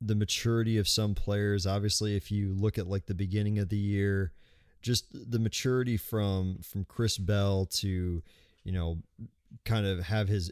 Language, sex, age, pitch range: English, male, 30-49, 95-110 Hz